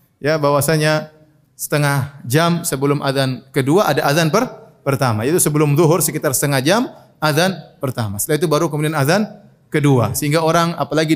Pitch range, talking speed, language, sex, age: 150-195 Hz, 150 wpm, Indonesian, male, 30-49